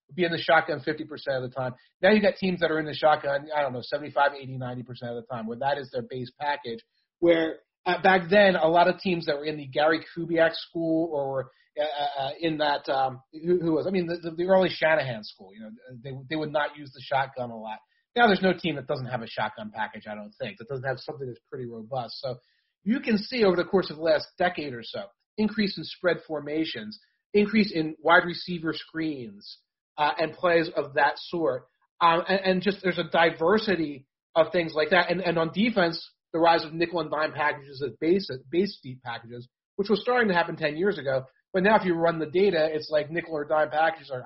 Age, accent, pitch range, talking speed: 30-49, American, 135-180 Hz, 235 wpm